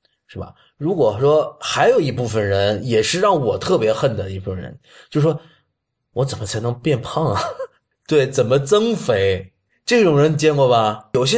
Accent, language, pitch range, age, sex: native, Chinese, 105-150 Hz, 20-39, male